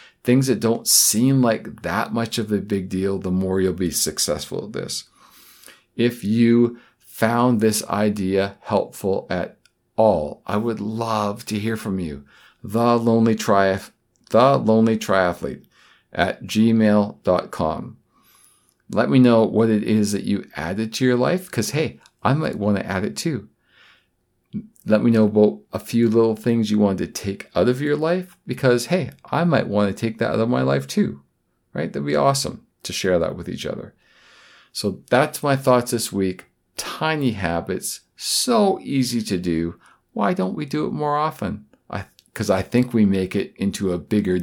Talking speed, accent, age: 175 wpm, American, 50-69